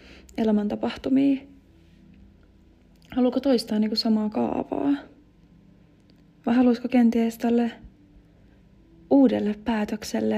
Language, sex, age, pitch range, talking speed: Finnish, female, 30-49, 205-250 Hz, 75 wpm